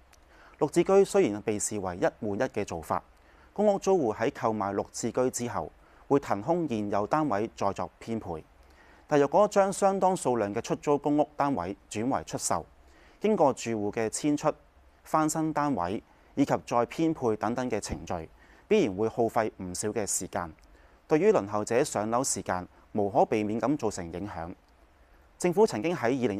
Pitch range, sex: 90-150 Hz, male